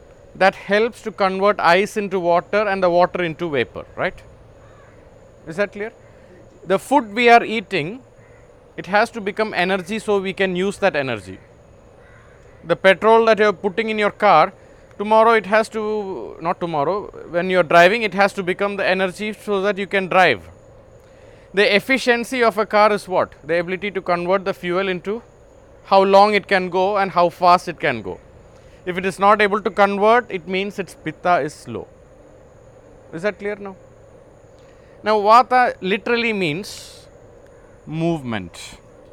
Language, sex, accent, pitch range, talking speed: English, male, Indian, 175-215 Hz, 165 wpm